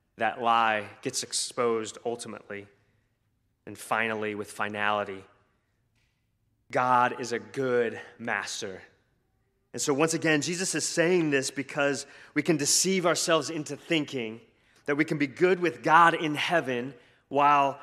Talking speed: 130 wpm